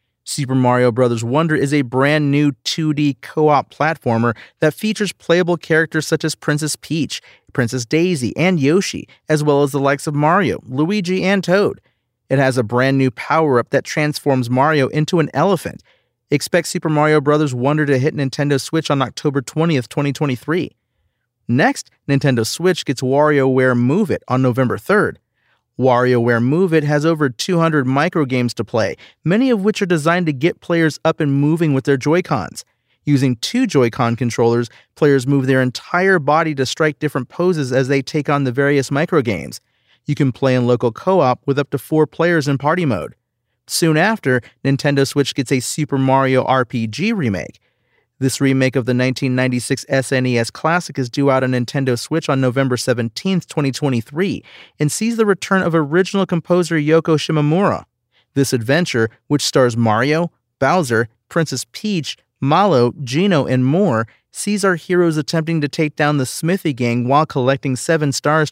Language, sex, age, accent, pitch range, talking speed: English, male, 40-59, American, 130-160 Hz, 165 wpm